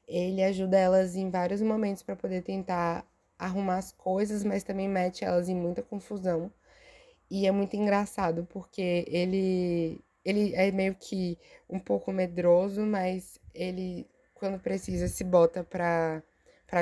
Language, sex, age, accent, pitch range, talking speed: Portuguese, female, 20-39, Brazilian, 175-205 Hz, 140 wpm